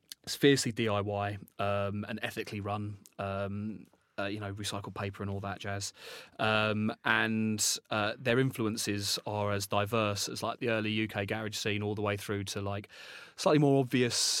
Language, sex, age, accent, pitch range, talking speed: English, male, 30-49, British, 100-115 Hz, 170 wpm